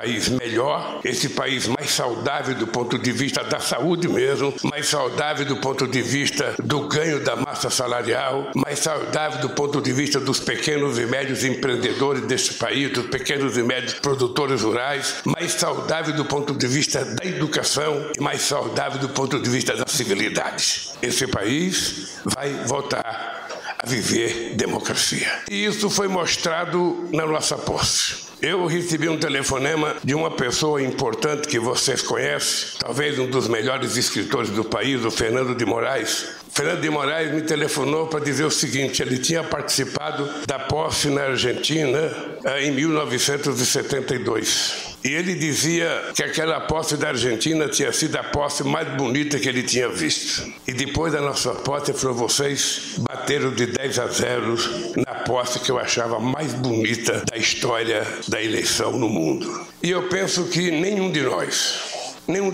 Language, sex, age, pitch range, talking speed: Portuguese, male, 60-79, 130-155 Hz, 160 wpm